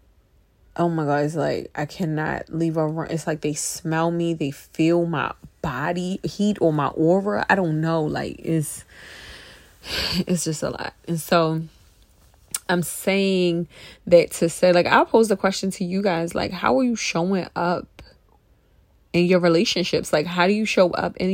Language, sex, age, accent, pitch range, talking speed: English, female, 20-39, American, 160-185 Hz, 175 wpm